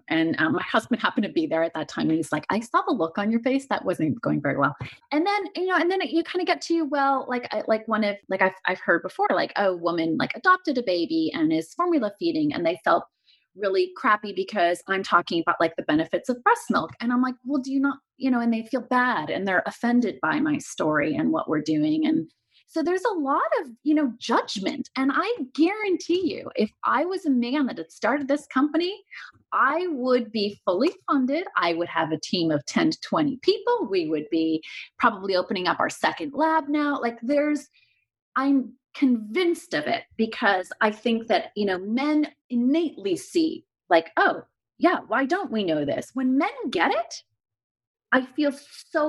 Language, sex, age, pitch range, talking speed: English, female, 30-49, 200-315 Hz, 215 wpm